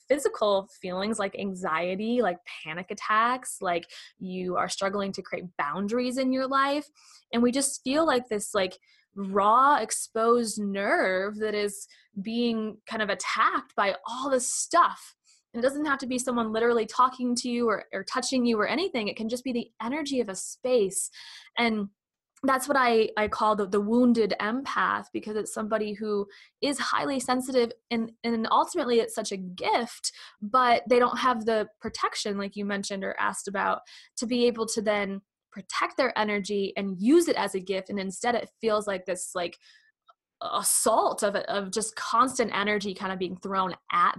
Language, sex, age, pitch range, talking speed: English, female, 20-39, 205-255 Hz, 180 wpm